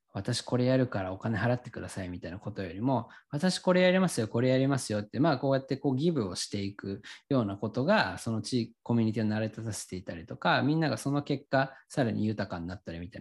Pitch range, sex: 105-135 Hz, male